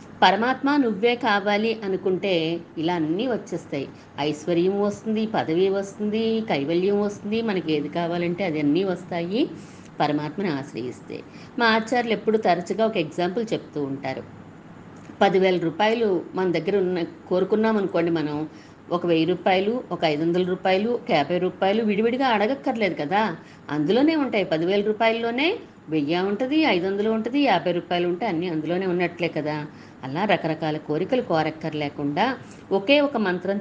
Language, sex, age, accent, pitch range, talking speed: Telugu, female, 50-69, native, 155-215 Hz, 120 wpm